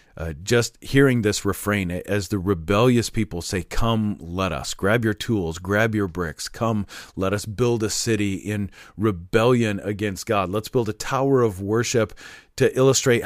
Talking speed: 165 wpm